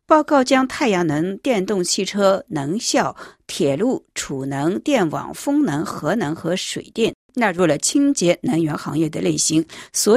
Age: 50-69